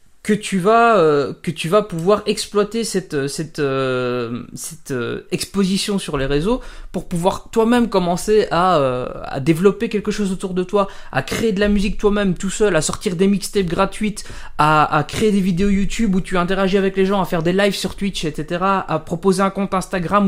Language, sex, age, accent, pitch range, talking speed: French, male, 20-39, French, 155-200 Hz, 200 wpm